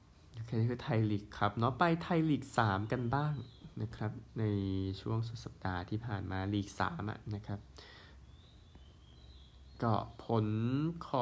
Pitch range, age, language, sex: 80-125 Hz, 20-39, Thai, male